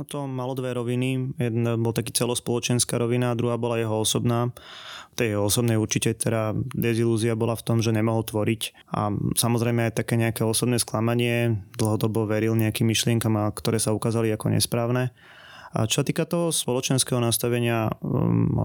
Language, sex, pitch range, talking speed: Slovak, male, 110-125 Hz, 165 wpm